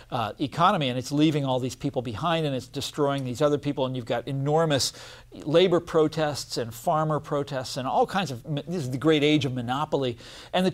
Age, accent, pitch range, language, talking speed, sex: 50-69, American, 130-175 Hz, English, 205 wpm, male